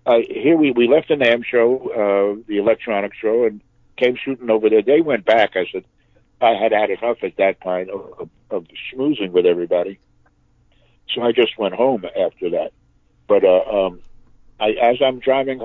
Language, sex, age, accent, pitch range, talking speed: English, male, 60-79, American, 110-150 Hz, 185 wpm